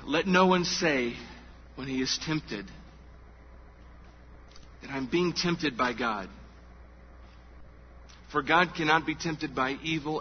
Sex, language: male, English